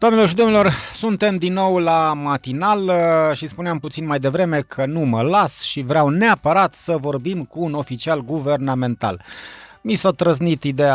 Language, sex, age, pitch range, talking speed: Romanian, male, 30-49, 135-185 Hz, 165 wpm